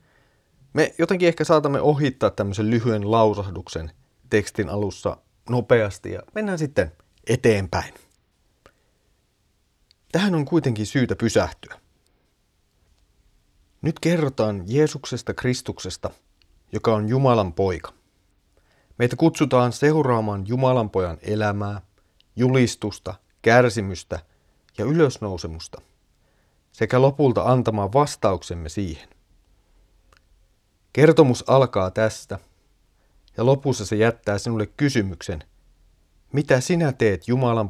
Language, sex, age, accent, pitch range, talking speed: Finnish, male, 30-49, native, 90-130 Hz, 90 wpm